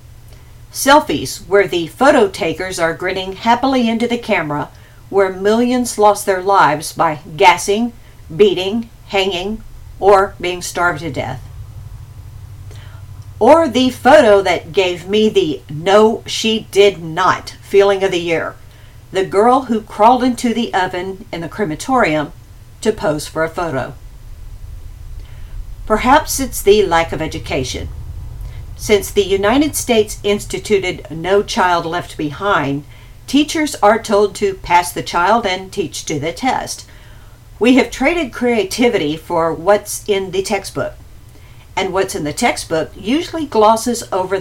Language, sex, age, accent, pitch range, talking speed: English, female, 50-69, American, 145-215 Hz, 135 wpm